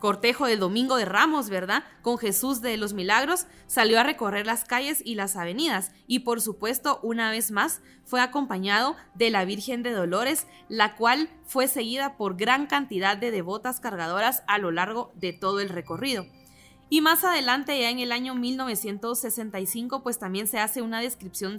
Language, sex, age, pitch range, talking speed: Spanish, female, 20-39, 200-255 Hz, 175 wpm